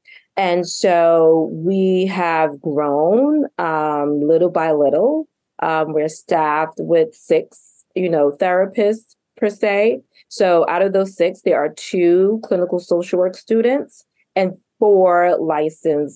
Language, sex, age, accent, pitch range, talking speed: English, female, 30-49, American, 155-190 Hz, 125 wpm